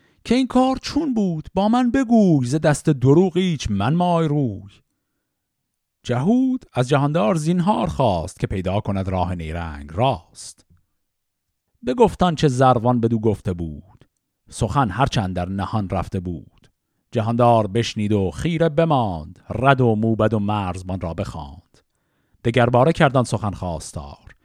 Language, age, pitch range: Persian, 50-69, 95-135 Hz